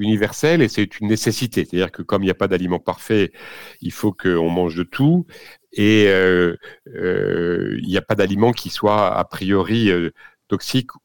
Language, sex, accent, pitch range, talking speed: French, male, French, 95-115 Hz, 185 wpm